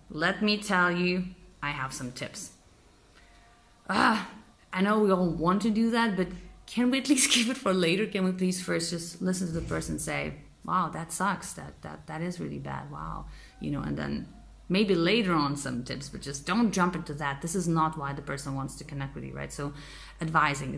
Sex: female